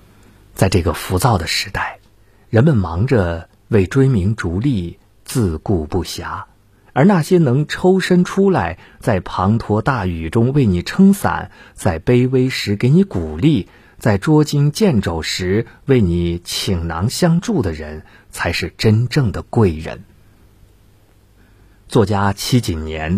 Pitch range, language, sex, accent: 90-120 Hz, Chinese, male, native